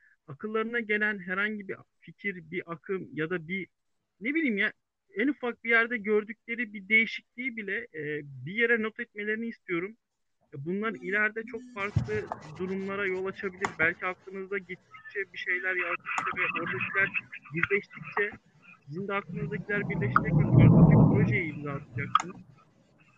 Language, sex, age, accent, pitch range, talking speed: Turkish, male, 50-69, native, 150-200 Hz, 135 wpm